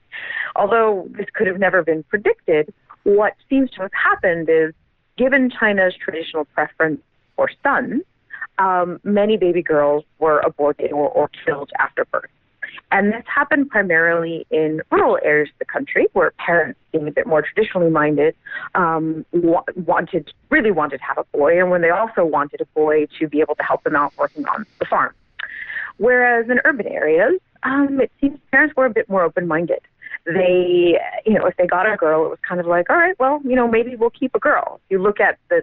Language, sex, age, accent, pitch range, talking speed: English, female, 30-49, American, 165-260 Hz, 190 wpm